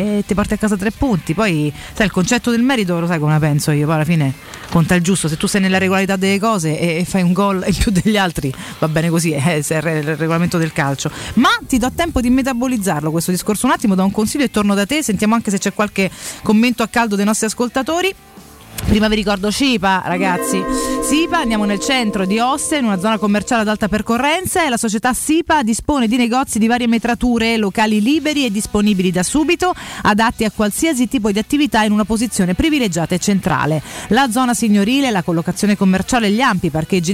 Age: 30-49